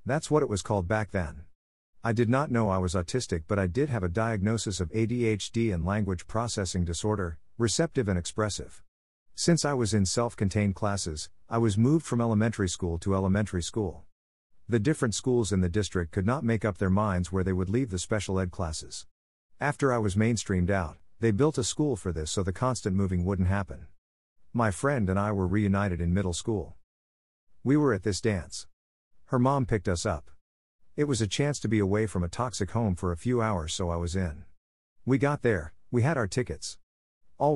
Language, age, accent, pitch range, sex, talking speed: English, 50-69, American, 90-115 Hz, male, 205 wpm